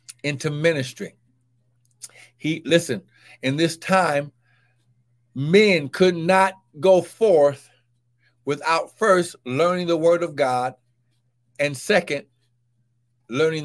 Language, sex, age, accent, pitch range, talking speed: English, male, 60-79, American, 145-240 Hz, 95 wpm